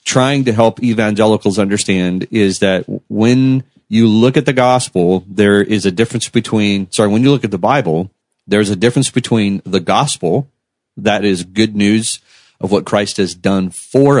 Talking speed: 175 wpm